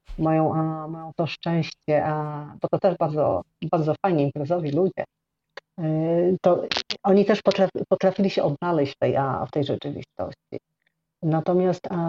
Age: 30-49